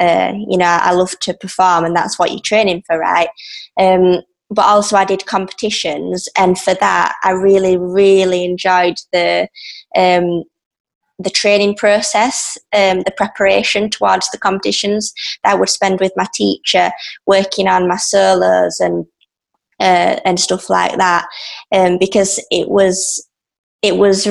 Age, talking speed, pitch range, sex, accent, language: 20-39, 150 wpm, 175-200 Hz, female, British, English